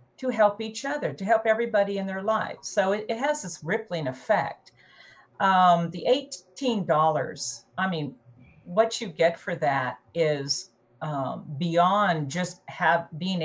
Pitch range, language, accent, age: 160-235 Hz, English, American, 50-69